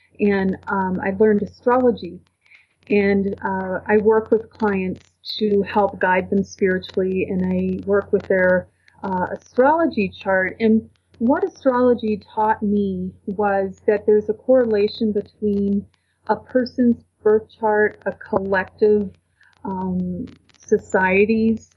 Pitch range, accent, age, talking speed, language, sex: 185-215 Hz, American, 30-49, 120 wpm, English, female